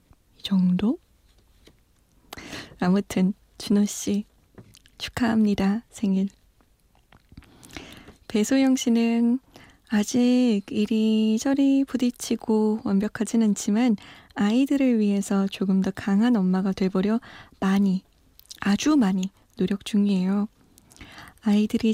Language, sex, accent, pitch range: Korean, female, native, 195-245 Hz